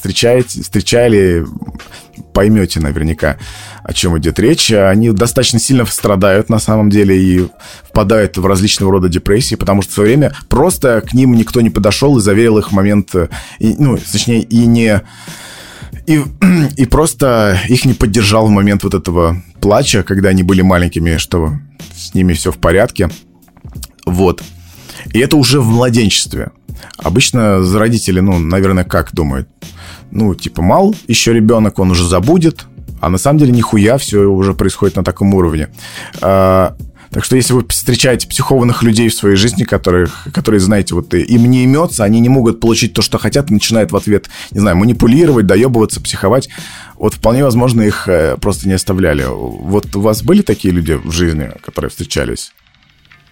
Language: Russian